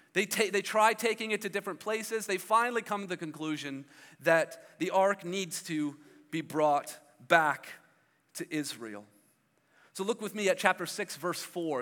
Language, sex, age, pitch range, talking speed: English, male, 40-59, 160-210 Hz, 170 wpm